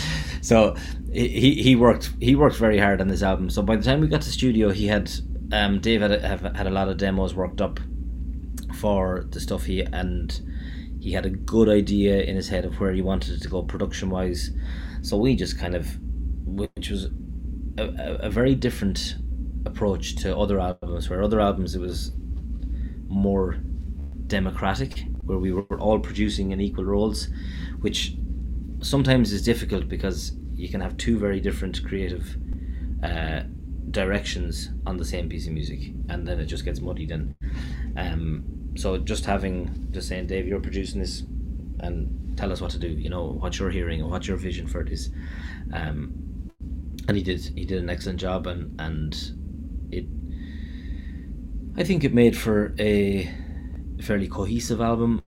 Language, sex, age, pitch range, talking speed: English, male, 20-39, 70-95 Hz, 175 wpm